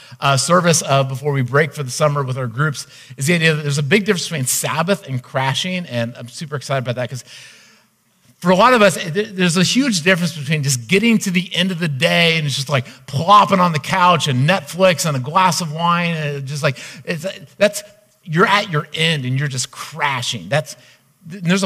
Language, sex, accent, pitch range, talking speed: English, male, American, 130-175 Hz, 220 wpm